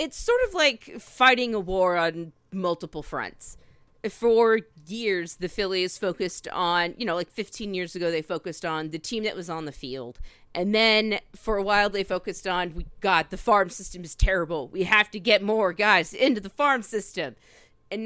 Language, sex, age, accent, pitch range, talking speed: English, female, 40-59, American, 175-215 Hz, 195 wpm